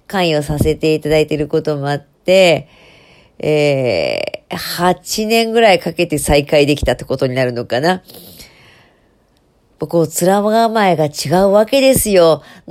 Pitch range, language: 150-195 Hz, Japanese